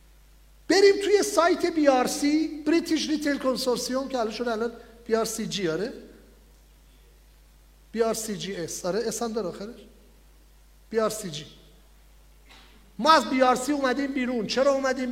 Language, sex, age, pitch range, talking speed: English, male, 50-69, 210-270 Hz, 130 wpm